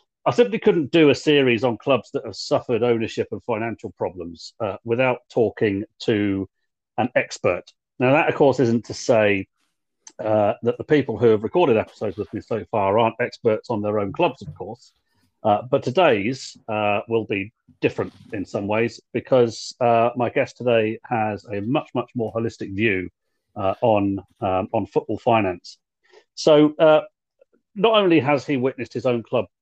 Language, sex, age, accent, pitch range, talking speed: English, male, 40-59, British, 105-140 Hz, 175 wpm